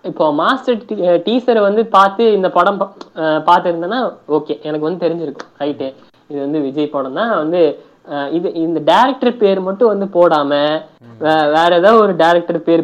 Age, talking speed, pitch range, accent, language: 20-39, 60 wpm, 145-200 Hz, native, Telugu